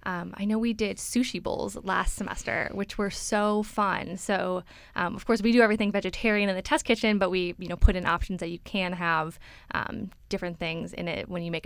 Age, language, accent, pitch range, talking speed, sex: 10-29, English, American, 185-230 Hz, 225 wpm, female